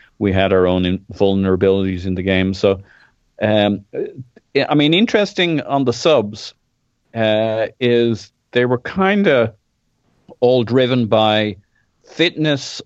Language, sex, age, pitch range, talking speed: English, male, 40-59, 100-120 Hz, 120 wpm